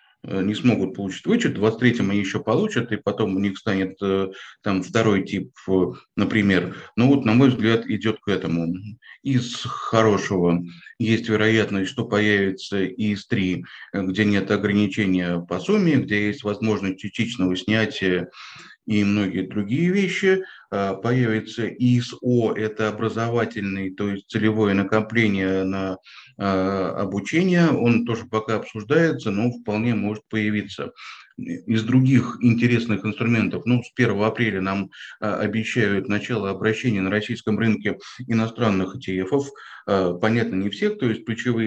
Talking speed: 130 wpm